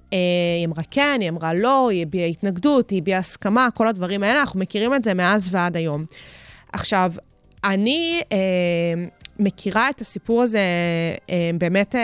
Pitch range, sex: 175-215 Hz, female